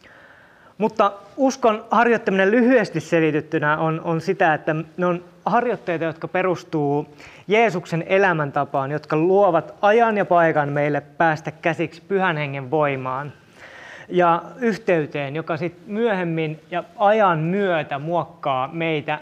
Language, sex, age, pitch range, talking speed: Finnish, male, 20-39, 150-190 Hz, 115 wpm